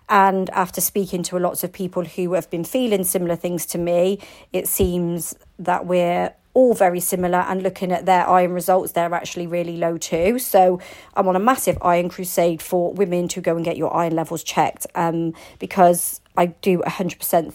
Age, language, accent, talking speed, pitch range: 40-59, English, British, 190 wpm, 165-190 Hz